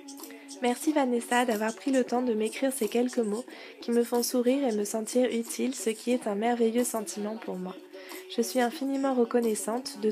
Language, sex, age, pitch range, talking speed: French, female, 20-39, 220-255 Hz, 190 wpm